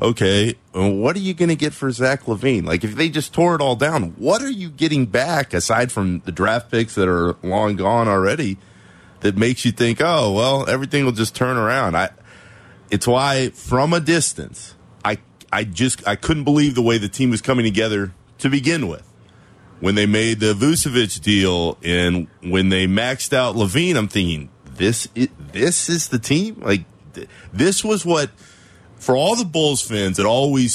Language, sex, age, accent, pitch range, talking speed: English, male, 30-49, American, 95-130 Hz, 190 wpm